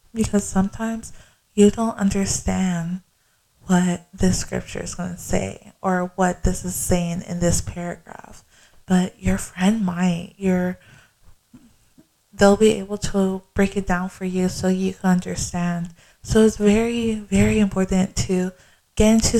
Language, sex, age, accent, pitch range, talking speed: English, female, 20-39, American, 175-195 Hz, 140 wpm